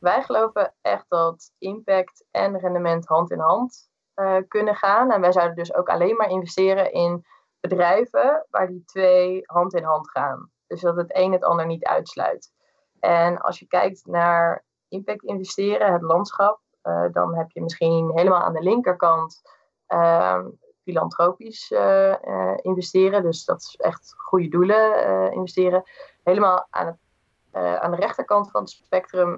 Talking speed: 160 wpm